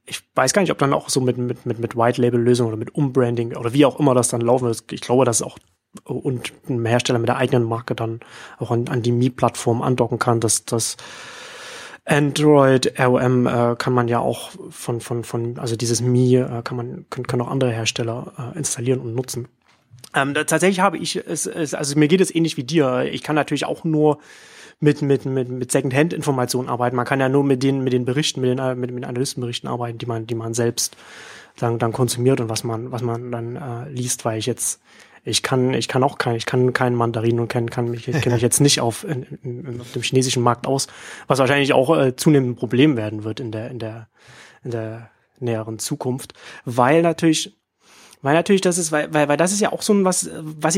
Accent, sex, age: German, male, 30-49